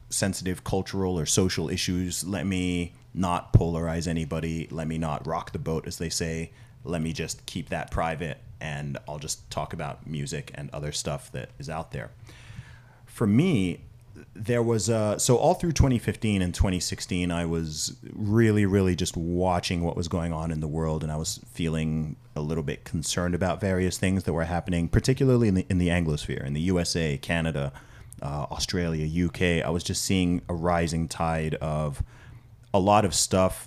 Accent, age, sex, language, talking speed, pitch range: American, 30-49, male, English, 180 wpm, 80-100 Hz